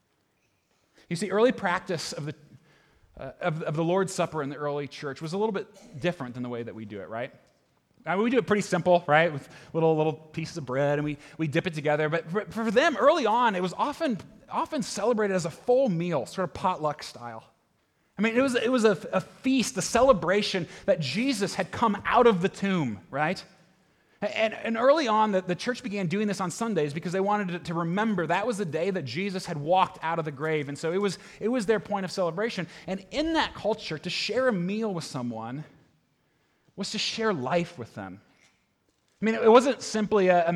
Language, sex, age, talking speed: English, male, 30-49, 225 wpm